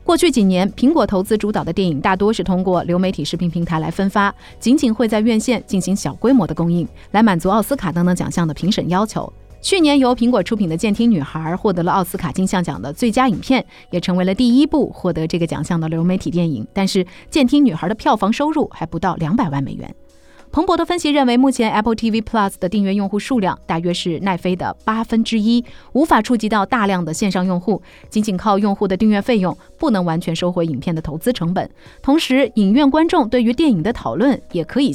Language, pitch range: Chinese, 175-240 Hz